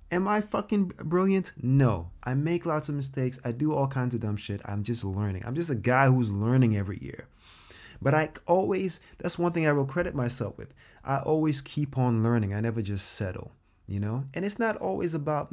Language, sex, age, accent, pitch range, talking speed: English, male, 20-39, American, 95-135 Hz, 215 wpm